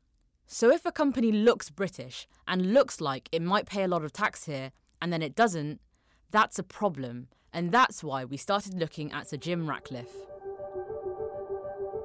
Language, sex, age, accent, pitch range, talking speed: English, female, 20-39, British, 150-220 Hz, 170 wpm